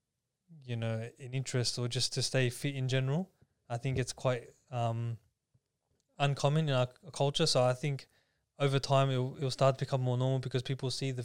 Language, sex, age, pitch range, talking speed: English, male, 20-39, 125-145 Hz, 190 wpm